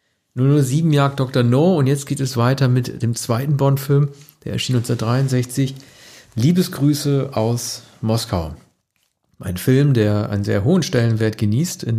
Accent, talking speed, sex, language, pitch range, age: German, 140 wpm, male, German, 115-140 Hz, 50-69